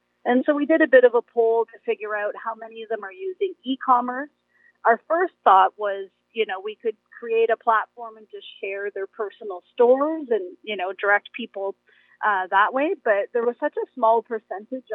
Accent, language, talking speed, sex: American, English, 205 wpm, female